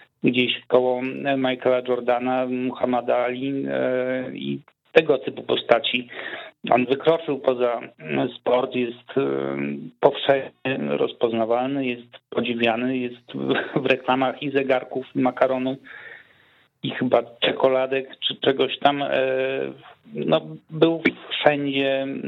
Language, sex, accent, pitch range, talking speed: Polish, male, native, 120-135 Hz, 95 wpm